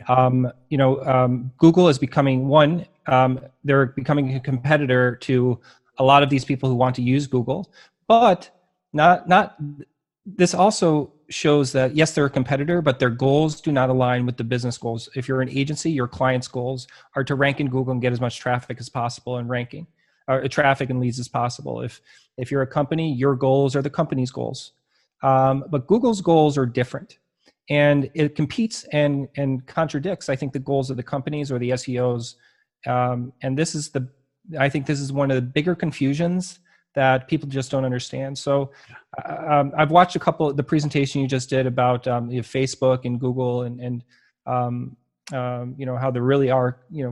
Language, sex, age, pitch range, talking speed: English, male, 30-49, 125-150 Hz, 195 wpm